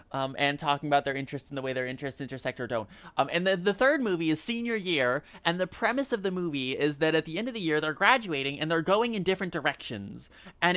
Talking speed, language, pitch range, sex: 255 wpm, English, 140-190 Hz, male